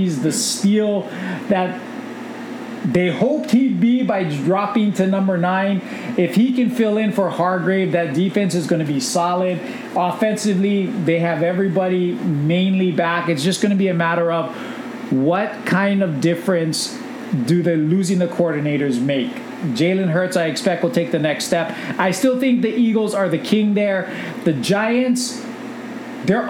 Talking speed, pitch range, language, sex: 160 wpm, 170-225 Hz, English, male